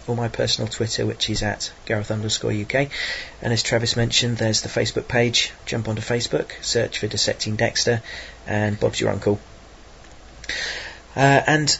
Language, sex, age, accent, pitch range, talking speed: English, male, 40-59, British, 105-115 Hz, 160 wpm